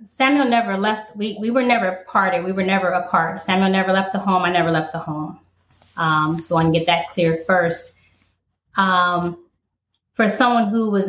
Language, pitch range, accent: English, 175-210 Hz, American